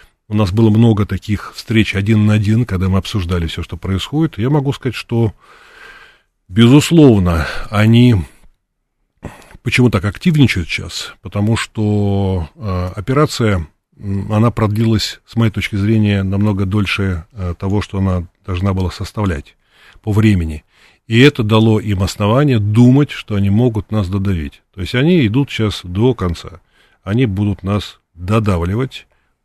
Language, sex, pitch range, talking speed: Russian, male, 95-115 Hz, 130 wpm